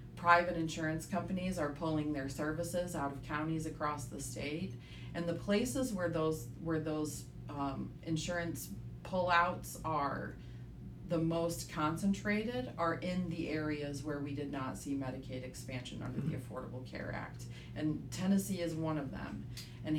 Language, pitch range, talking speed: English, 140-170 Hz, 150 wpm